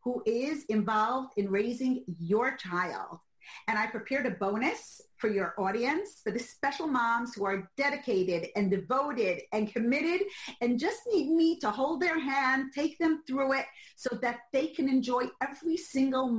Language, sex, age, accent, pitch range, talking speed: English, female, 40-59, American, 215-300 Hz, 165 wpm